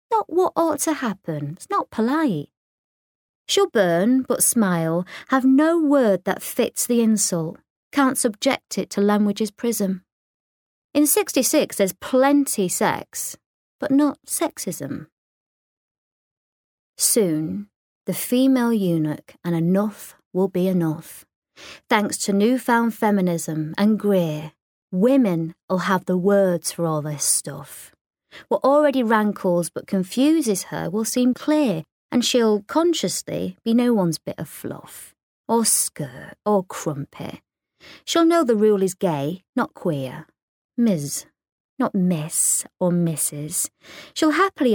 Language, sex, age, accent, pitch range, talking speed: English, female, 30-49, British, 180-250 Hz, 125 wpm